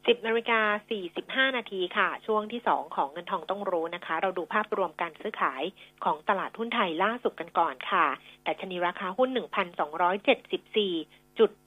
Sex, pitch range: female, 180-240 Hz